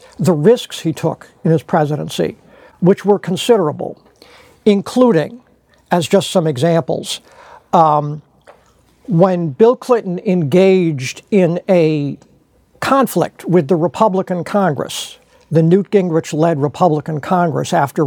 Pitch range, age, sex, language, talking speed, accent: 160-205 Hz, 60-79, male, English, 110 wpm, American